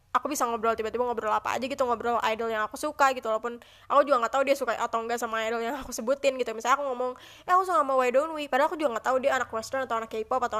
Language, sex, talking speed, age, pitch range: Indonesian, female, 290 wpm, 20-39, 225-275 Hz